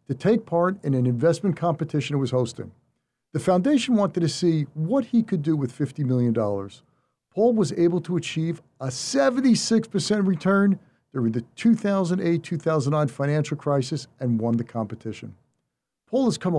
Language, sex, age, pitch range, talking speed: English, male, 50-69, 130-185 Hz, 150 wpm